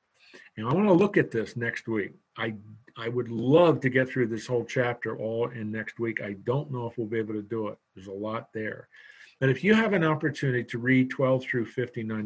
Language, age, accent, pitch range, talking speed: English, 50-69, American, 115-140 Hz, 235 wpm